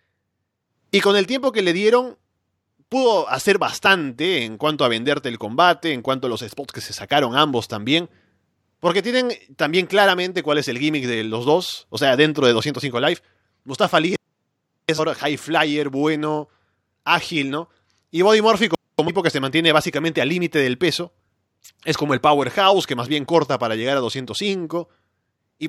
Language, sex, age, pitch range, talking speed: Spanish, male, 30-49, 125-170 Hz, 180 wpm